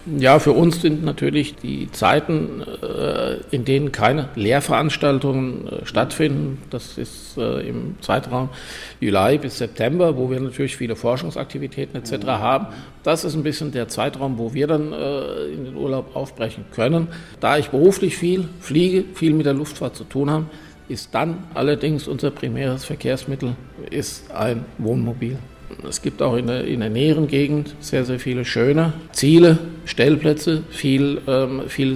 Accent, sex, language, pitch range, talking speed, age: German, male, German, 125-150 Hz, 145 wpm, 50-69